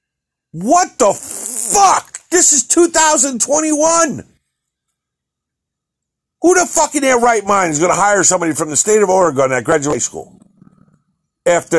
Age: 50-69